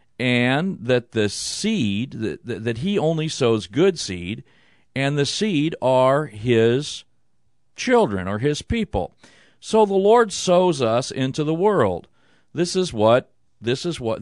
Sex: male